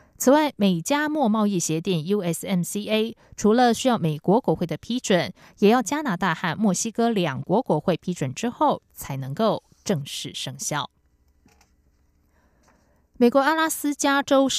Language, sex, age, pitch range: German, female, 20-39, 165-220 Hz